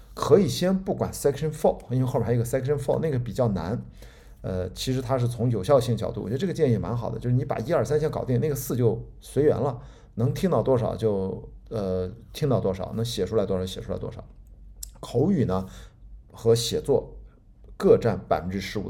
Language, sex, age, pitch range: Chinese, male, 50-69, 95-130 Hz